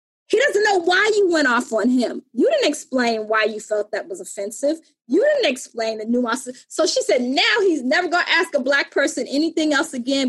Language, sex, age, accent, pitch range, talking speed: English, female, 20-39, American, 280-380 Hz, 220 wpm